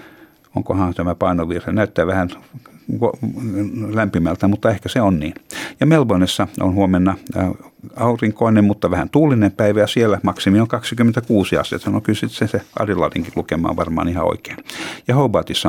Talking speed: 140 wpm